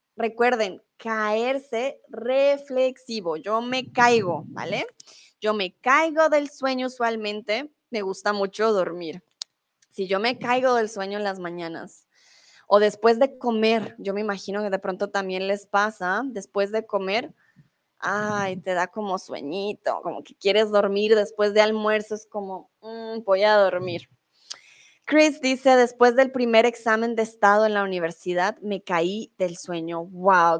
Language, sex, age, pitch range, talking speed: Spanish, female, 20-39, 195-240 Hz, 145 wpm